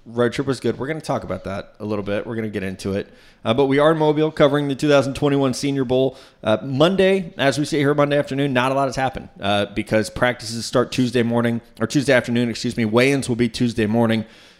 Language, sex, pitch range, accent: English, male, 110-135 Hz, American